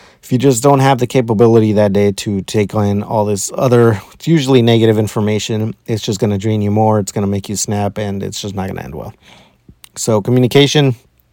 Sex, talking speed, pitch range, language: male, 205 wpm, 105-120 Hz, English